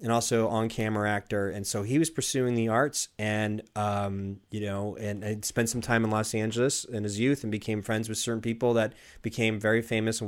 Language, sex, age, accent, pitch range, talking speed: English, male, 30-49, American, 105-125 Hz, 220 wpm